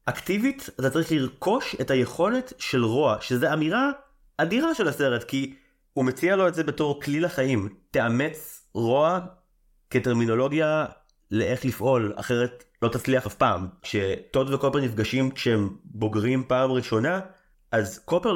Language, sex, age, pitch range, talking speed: Hebrew, male, 30-49, 115-165 Hz, 135 wpm